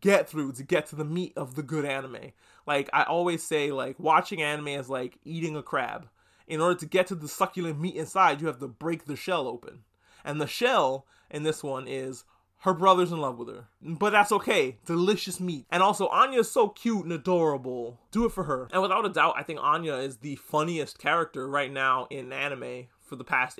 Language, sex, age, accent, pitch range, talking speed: English, male, 20-39, American, 140-180 Hz, 220 wpm